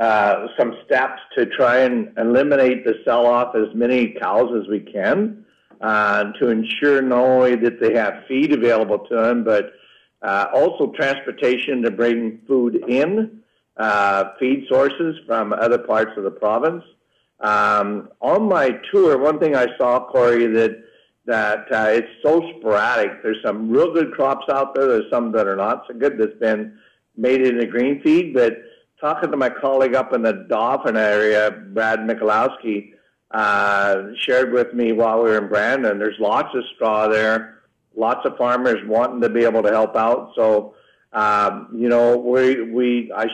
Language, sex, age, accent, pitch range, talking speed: English, male, 60-79, American, 110-135 Hz, 170 wpm